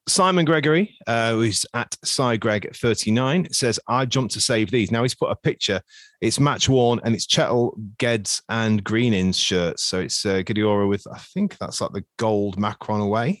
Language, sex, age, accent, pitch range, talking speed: English, male, 30-49, British, 105-135 Hz, 185 wpm